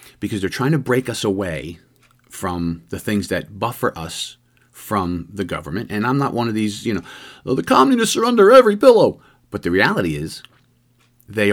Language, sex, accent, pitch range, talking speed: English, male, American, 105-150 Hz, 185 wpm